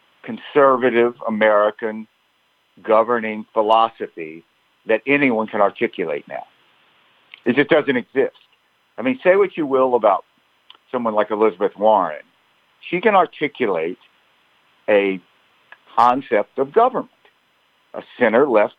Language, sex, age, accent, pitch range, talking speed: English, male, 60-79, American, 110-145 Hz, 105 wpm